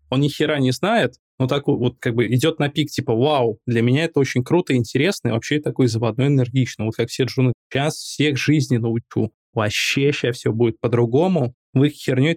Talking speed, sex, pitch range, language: 195 wpm, male, 120-150 Hz, Russian